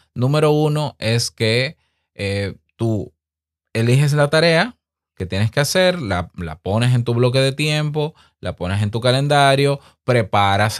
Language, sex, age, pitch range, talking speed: Spanish, male, 20-39, 90-125 Hz, 150 wpm